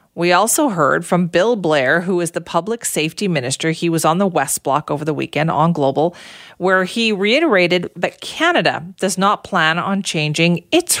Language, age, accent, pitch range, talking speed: English, 40-59, American, 150-195 Hz, 185 wpm